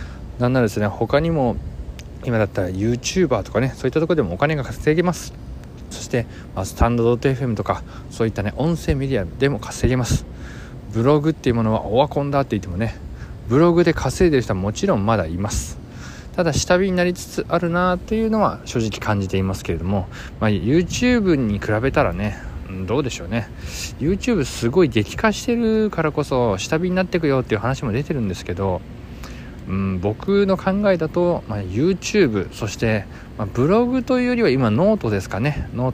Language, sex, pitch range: Japanese, male, 105-165 Hz